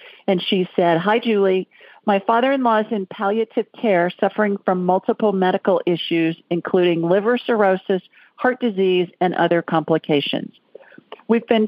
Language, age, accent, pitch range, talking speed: English, 50-69, American, 170-210 Hz, 135 wpm